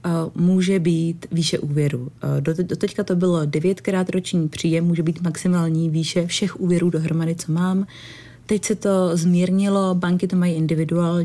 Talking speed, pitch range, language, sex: 145 wpm, 160-185 Hz, Czech, female